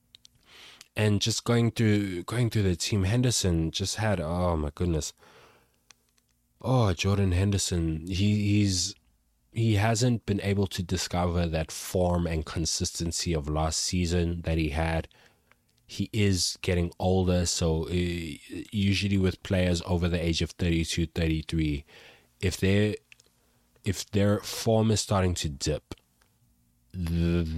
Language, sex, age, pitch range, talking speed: English, male, 20-39, 80-95 Hz, 135 wpm